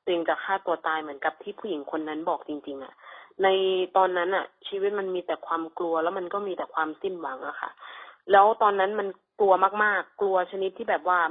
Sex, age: female, 20-39